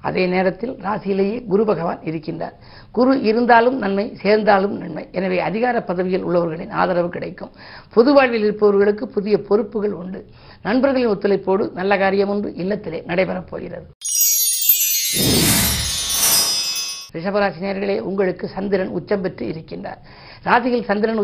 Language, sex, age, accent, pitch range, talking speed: Tamil, female, 50-69, native, 190-220 Hz, 110 wpm